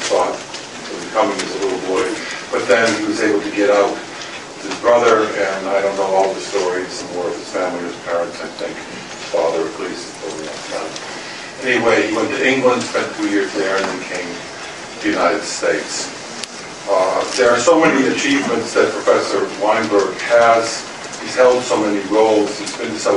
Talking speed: 190 wpm